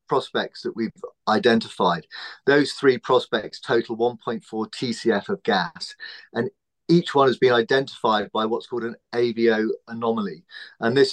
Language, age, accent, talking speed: English, 40-59, British, 140 wpm